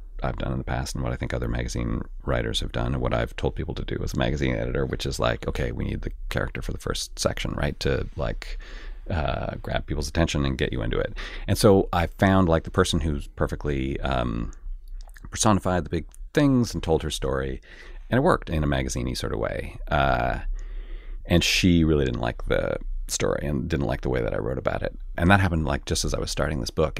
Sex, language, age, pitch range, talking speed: male, English, 30-49, 65-90 Hz, 235 wpm